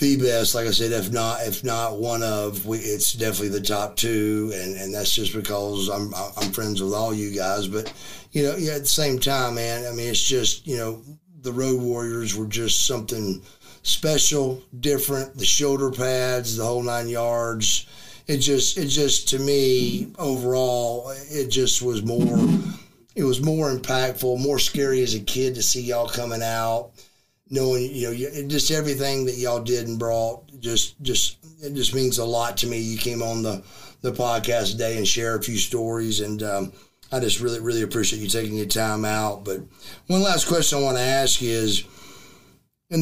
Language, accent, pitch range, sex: English, American, 110-140 Hz, male